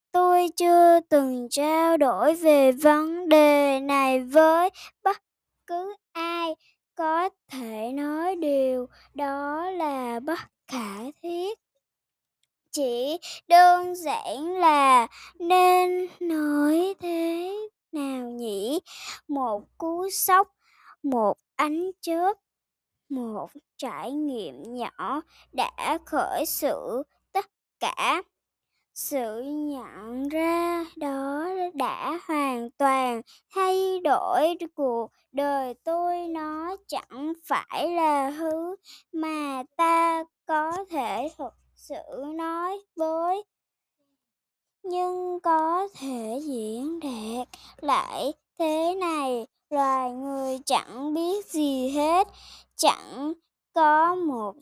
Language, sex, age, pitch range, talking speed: Vietnamese, male, 10-29, 275-345 Hz, 95 wpm